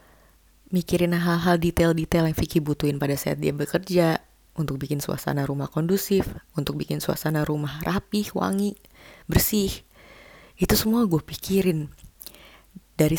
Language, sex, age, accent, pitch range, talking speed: English, female, 20-39, Indonesian, 140-170 Hz, 125 wpm